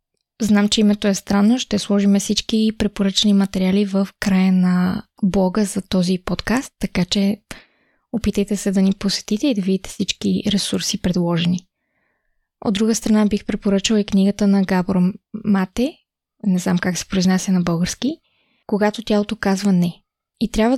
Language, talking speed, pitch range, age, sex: Bulgarian, 155 wpm, 195-220 Hz, 20-39, female